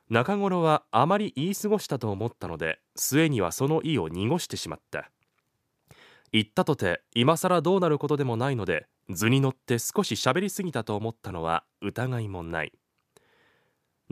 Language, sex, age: Japanese, male, 20-39